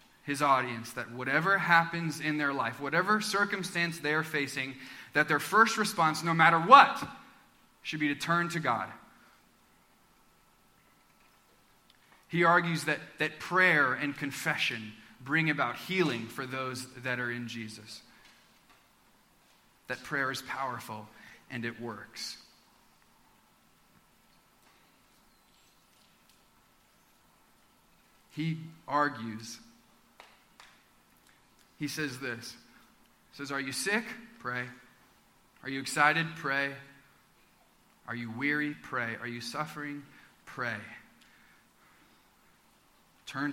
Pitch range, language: 135-170 Hz, English